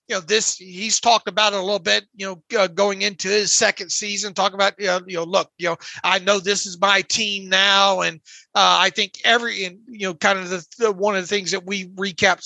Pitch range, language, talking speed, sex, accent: 190-215 Hz, English, 255 wpm, male, American